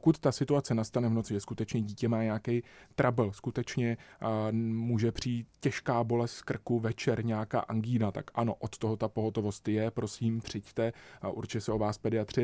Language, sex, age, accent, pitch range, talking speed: Czech, male, 20-39, native, 110-125 Hz, 175 wpm